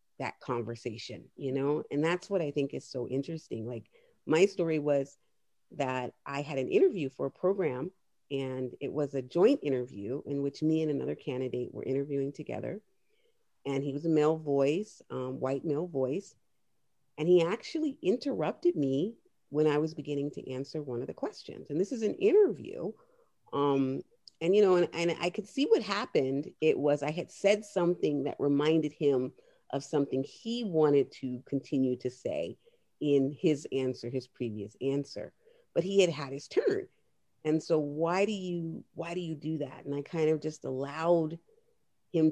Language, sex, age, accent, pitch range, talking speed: English, female, 40-59, American, 140-175 Hz, 175 wpm